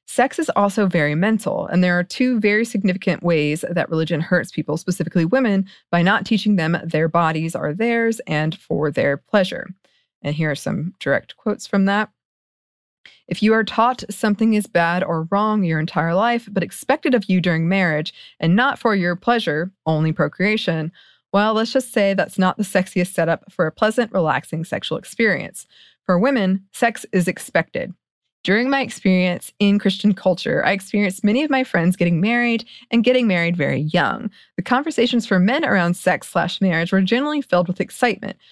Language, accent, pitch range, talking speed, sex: English, American, 175-220 Hz, 180 wpm, female